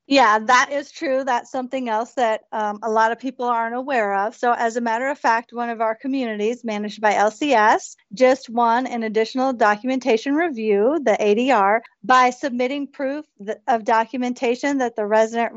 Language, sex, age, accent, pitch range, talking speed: English, female, 40-59, American, 220-260 Hz, 175 wpm